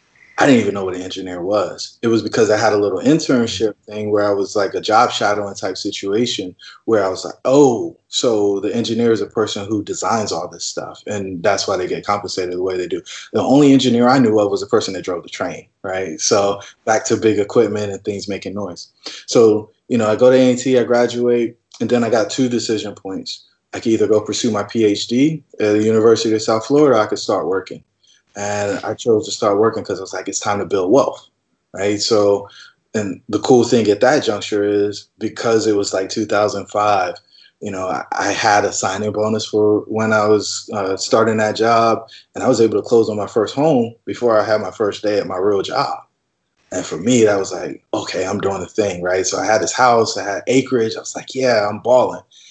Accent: American